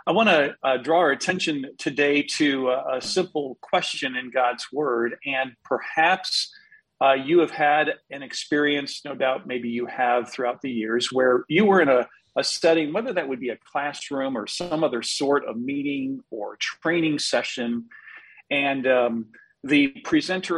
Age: 50-69